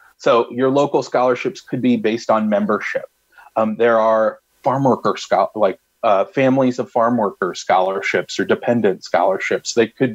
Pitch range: 105-125 Hz